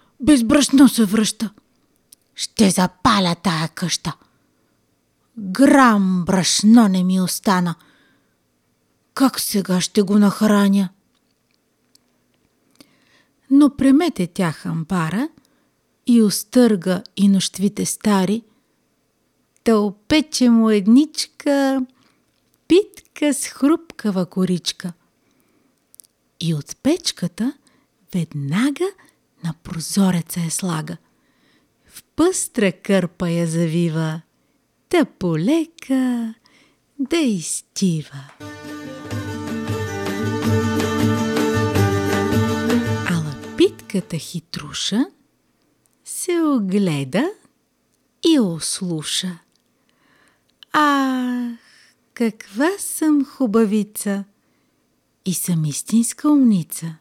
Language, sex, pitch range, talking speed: Bulgarian, female, 170-265 Hz, 70 wpm